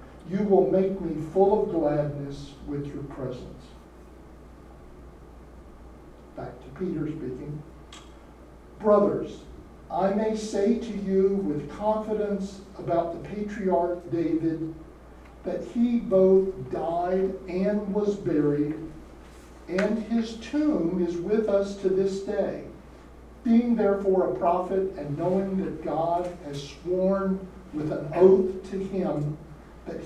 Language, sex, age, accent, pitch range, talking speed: English, male, 60-79, American, 150-195 Hz, 115 wpm